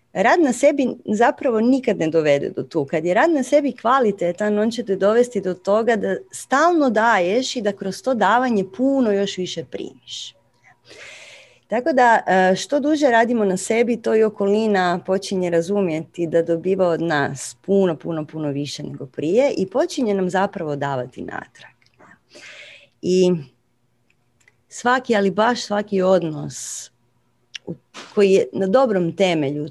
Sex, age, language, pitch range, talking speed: female, 30-49, Croatian, 155-220 Hz, 145 wpm